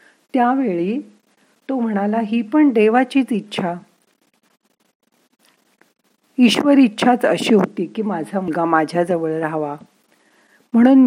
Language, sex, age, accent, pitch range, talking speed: Marathi, female, 50-69, native, 175-230 Hz, 90 wpm